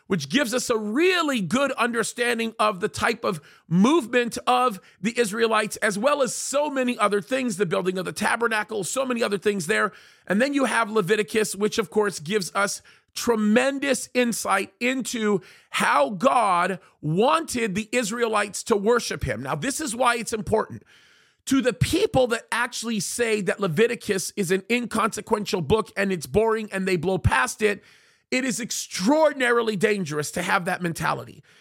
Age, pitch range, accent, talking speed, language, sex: 40-59, 205-250 Hz, American, 165 wpm, English, male